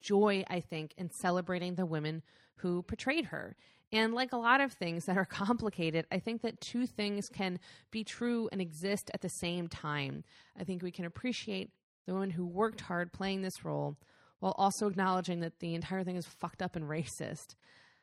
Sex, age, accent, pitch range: female, 20-39, American, 175-225 Hz